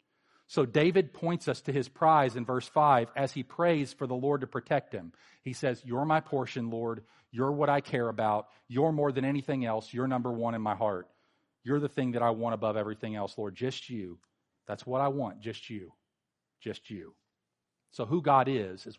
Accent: American